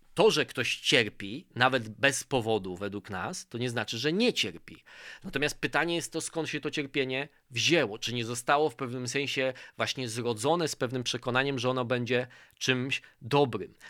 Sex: male